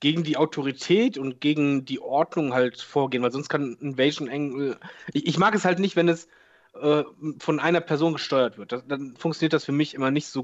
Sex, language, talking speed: male, German, 215 wpm